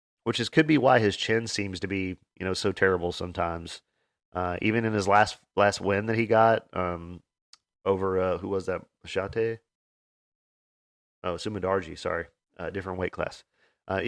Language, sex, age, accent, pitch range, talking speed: English, male, 30-49, American, 95-115 Hz, 175 wpm